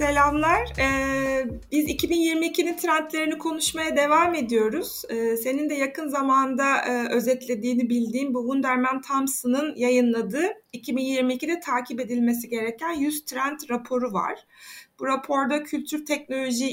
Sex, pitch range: female, 245-315 Hz